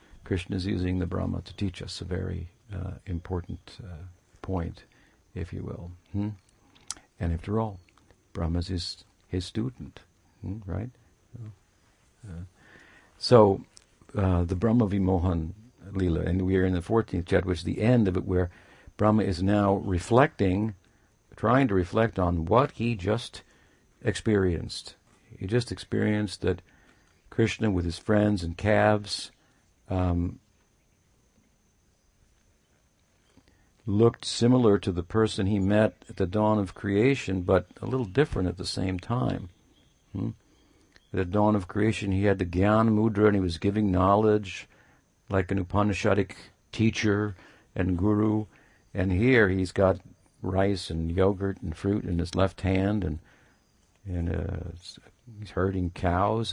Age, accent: 60-79, American